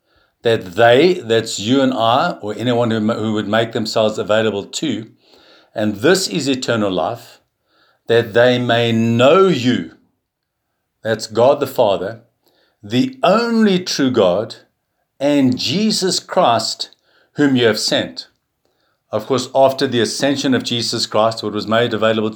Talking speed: 140 wpm